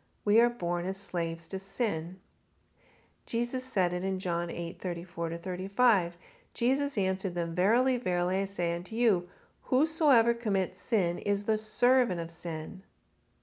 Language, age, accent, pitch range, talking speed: English, 50-69, American, 180-230 Hz, 150 wpm